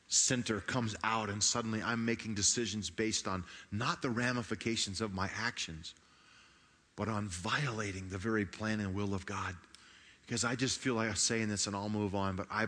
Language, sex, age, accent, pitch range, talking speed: English, male, 40-59, American, 100-120 Hz, 190 wpm